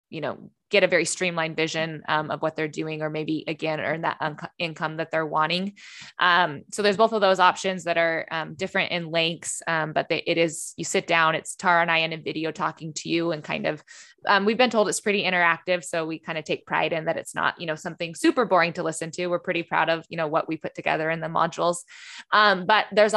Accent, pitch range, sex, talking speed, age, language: American, 165-185 Hz, female, 250 wpm, 20-39, English